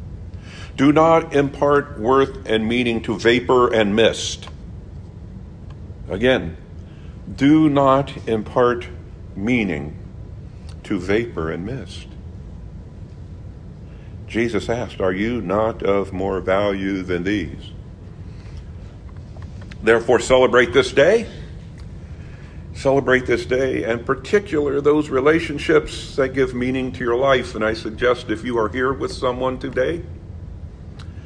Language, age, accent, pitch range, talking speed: English, 50-69, American, 90-125 Hz, 110 wpm